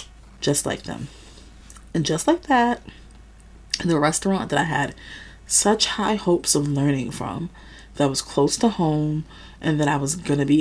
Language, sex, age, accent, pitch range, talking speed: English, female, 30-49, American, 140-180 Hz, 170 wpm